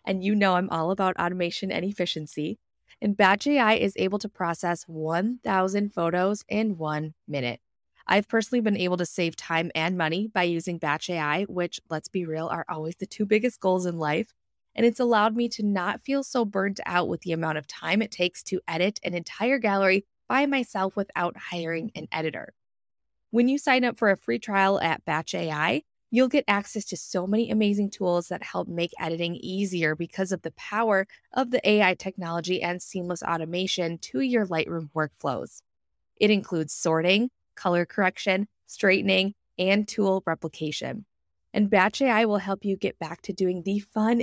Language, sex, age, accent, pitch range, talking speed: English, female, 20-39, American, 170-215 Hz, 180 wpm